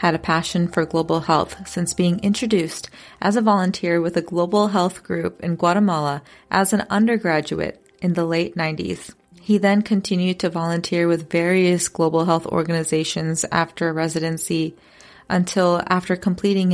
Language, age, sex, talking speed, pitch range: English, 30-49, female, 145 wpm, 165-190 Hz